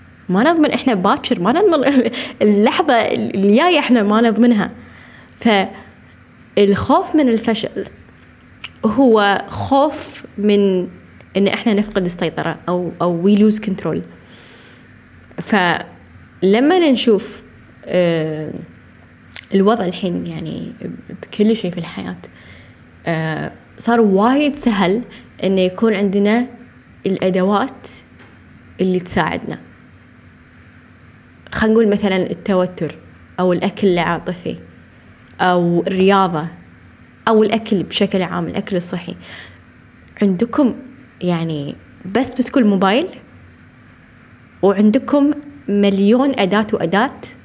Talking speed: 85 wpm